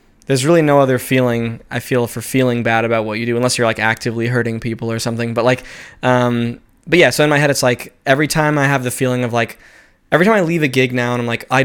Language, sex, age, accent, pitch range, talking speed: English, male, 10-29, American, 120-140 Hz, 270 wpm